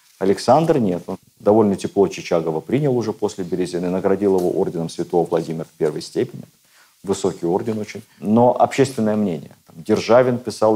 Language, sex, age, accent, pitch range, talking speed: Russian, male, 50-69, native, 95-125 Hz, 145 wpm